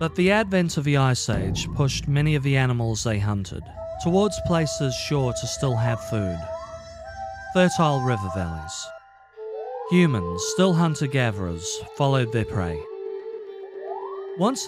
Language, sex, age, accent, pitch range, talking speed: English, male, 40-59, British, 110-165 Hz, 125 wpm